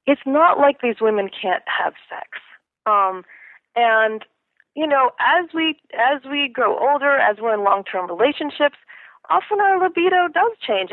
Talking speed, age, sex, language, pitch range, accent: 155 wpm, 40-59, female, English, 205-315 Hz, American